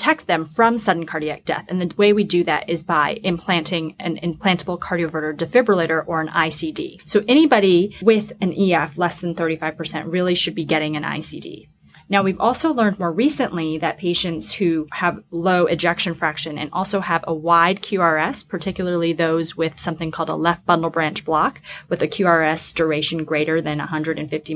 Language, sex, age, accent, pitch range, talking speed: English, female, 20-39, American, 160-200 Hz, 175 wpm